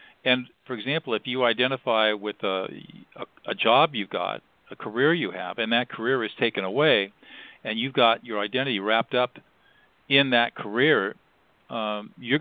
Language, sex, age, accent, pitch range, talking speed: English, male, 50-69, American, 105-135 Hz, 165 wpm